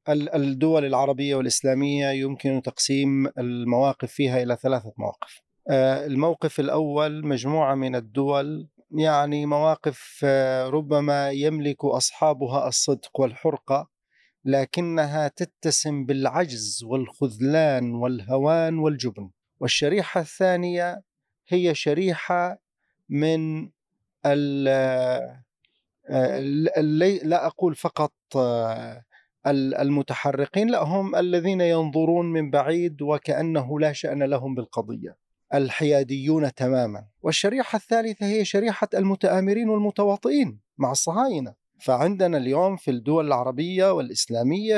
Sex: male